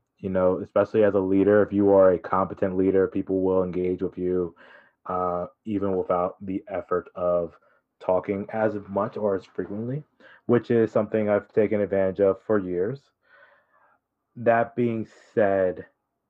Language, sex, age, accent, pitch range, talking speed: English, male, 20-39, American, 90-105 Hz, 150 wpm